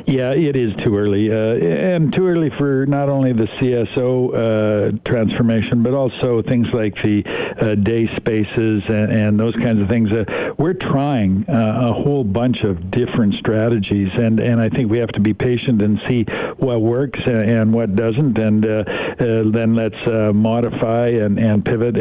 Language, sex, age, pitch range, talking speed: English, male, 60-79, 105-120 Hz, 185 wpm